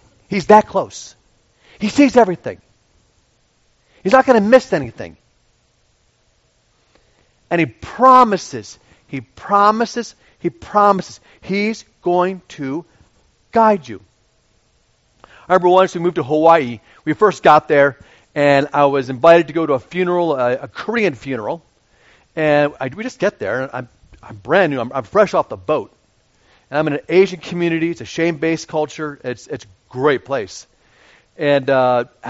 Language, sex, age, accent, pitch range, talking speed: English, male, 40-59, American, 140-195 Hz, 150 wpm